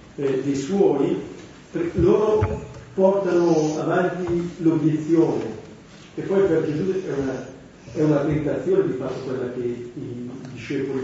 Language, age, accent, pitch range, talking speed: Italian, 40-59, native, 145-180 Hz, 110 wpm